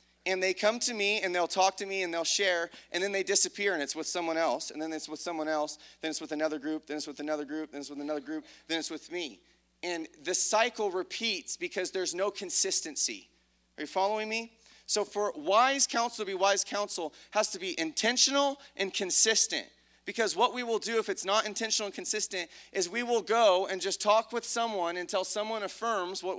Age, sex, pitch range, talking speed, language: 30-49, male, 175-230 Hz, 220 wpm, English